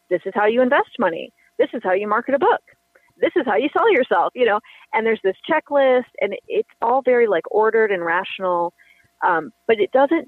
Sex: female